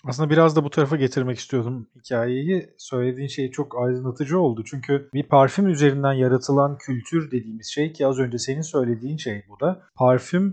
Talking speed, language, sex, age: 170 wpm, Turkish, male, 40-59